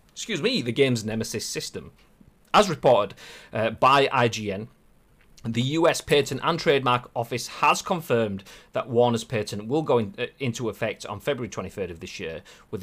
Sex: male